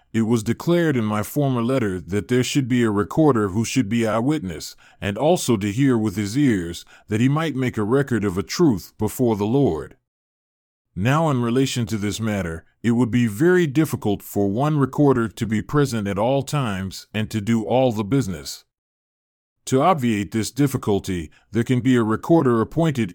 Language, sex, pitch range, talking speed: English, male, 105-140 Hz, 185 wpm